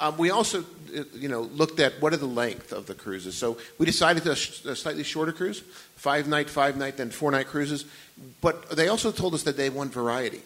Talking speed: 210 wpm